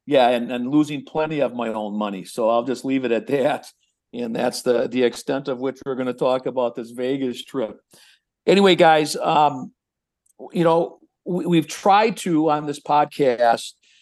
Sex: male